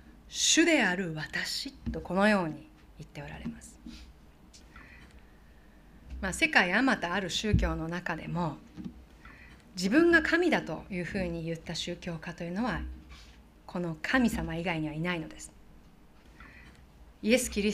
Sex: female